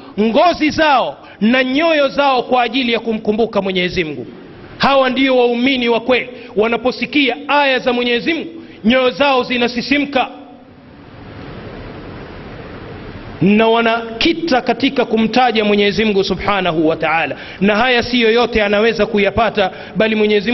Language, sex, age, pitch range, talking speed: Swahili, male, 40-59, 220-265 Hz, 115 wpm